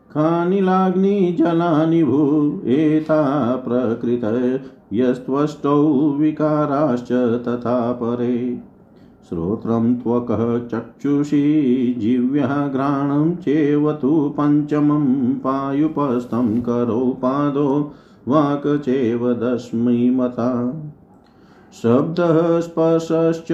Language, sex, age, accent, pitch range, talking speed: Hindi, male, 50-69, native, 120-155 Hz, 50 wpm